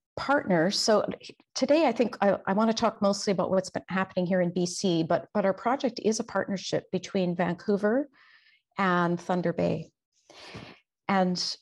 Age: 50-69